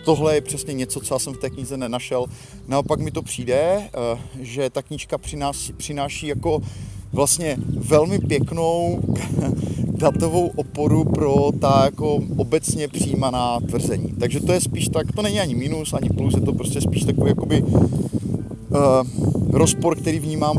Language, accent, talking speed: Czech, native, 150 wpm